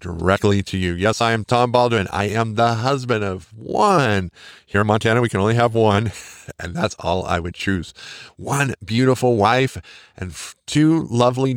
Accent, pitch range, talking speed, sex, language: American, 100-125 Hz, 175 wpm, male, English